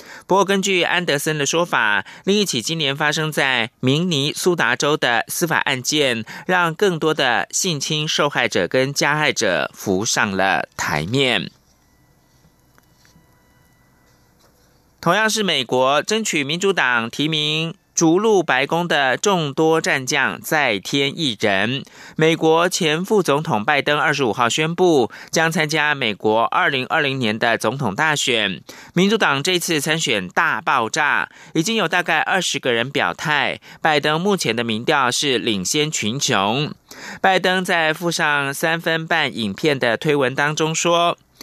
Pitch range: 135-175 Hz